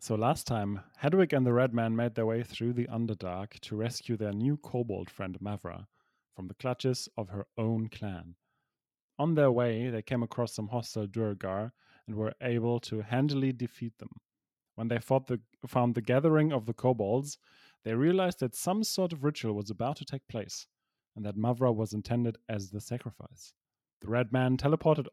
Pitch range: 110-135 Hz